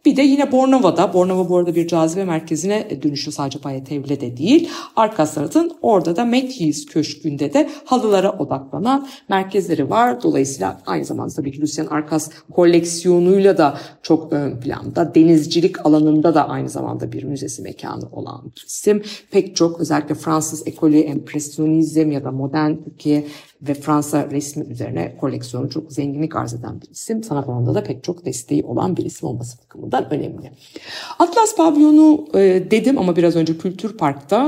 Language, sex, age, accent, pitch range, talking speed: Turkish, female, 50-69, native, 150-230 Hz, 150 wpm